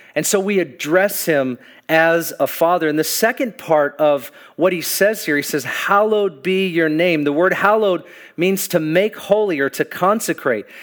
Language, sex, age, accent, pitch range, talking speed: English, male, 40-59, American, 170-210 Hz, 185 wpm